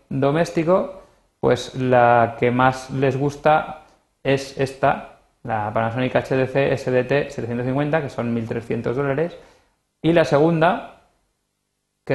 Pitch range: 115-145 Hz